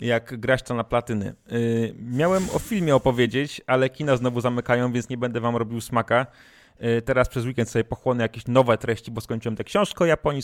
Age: 30-49